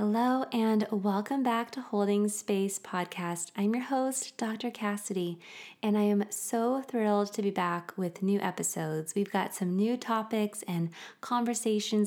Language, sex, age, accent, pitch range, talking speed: English, female, 20-39, American, 180-220 Hz, 155 wpm